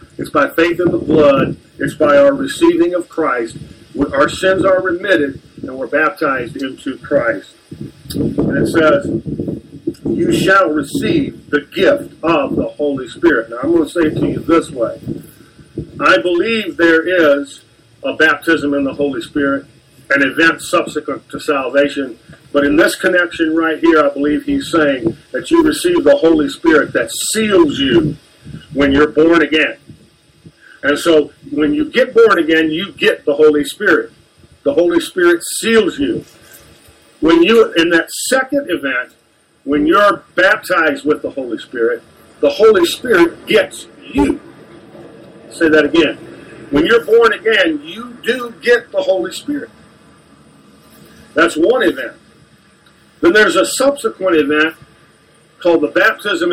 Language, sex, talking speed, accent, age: English, male, 150 wpm, American, 50-69